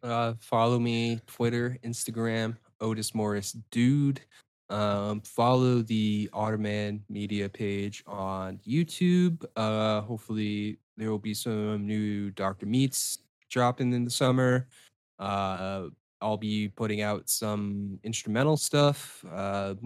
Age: 20-39